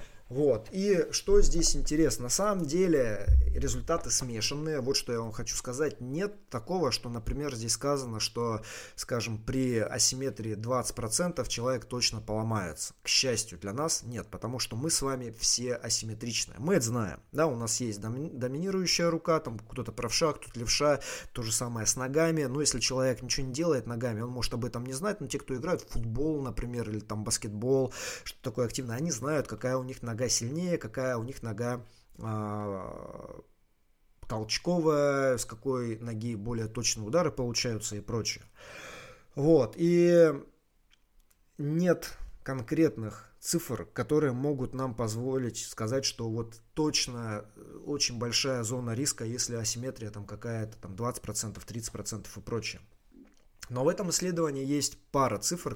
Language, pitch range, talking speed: Russian, 115-140 Hz, 155 wpm